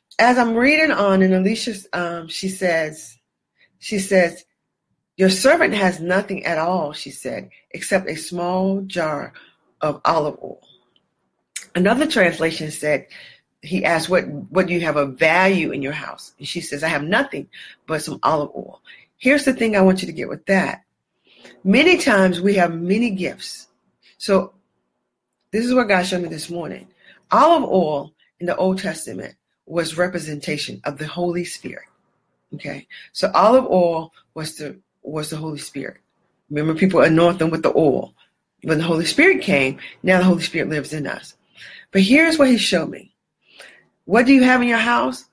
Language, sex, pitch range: English, female, 165-225 Hz